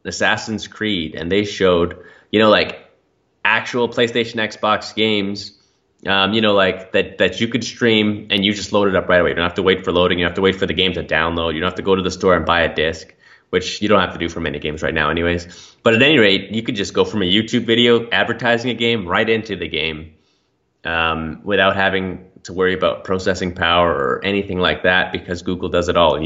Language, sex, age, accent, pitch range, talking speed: English, male, 20-39, American, 90-105 Hz, 240 wpm